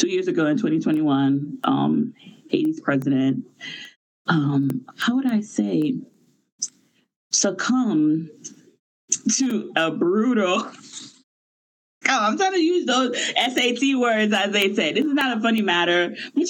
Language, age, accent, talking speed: English, 30-49, American, 125 wpm